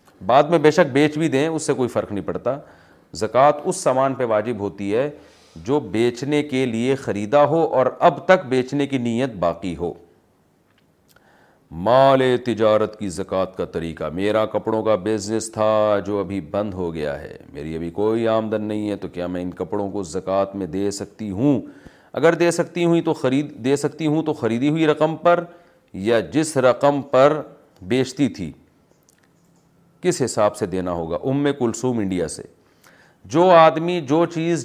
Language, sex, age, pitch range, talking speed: Urdu, male, 40-59, 105-150 Hz, 175 wpm